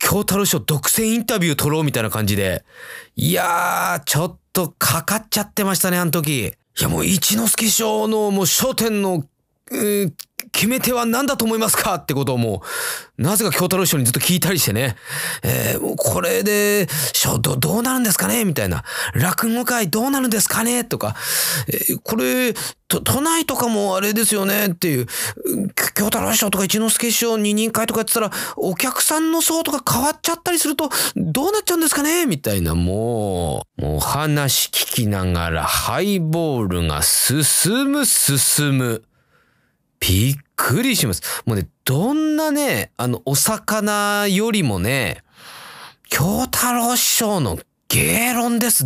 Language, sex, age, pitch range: Japanese, male, 30-49, 135-225 Hz